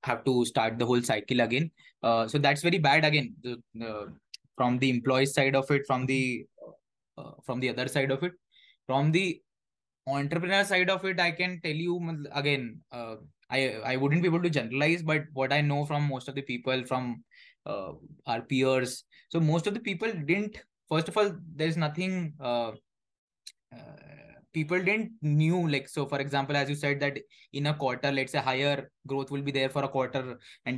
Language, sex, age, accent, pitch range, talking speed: English, male, 20-39, Indian, 130-160 Hz, 195 wpm